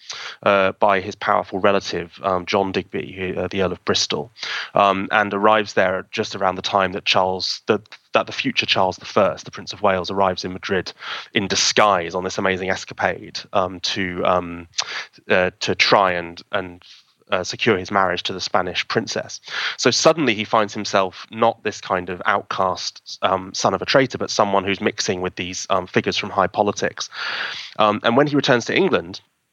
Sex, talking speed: male, 185 wpm